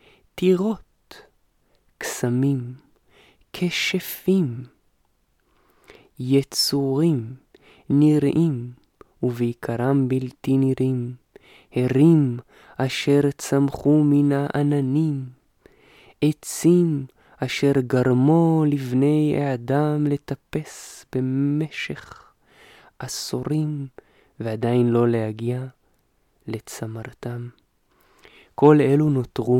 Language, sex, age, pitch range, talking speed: Hebrew, male, 20-39, 120-145 Hz, 55 wpm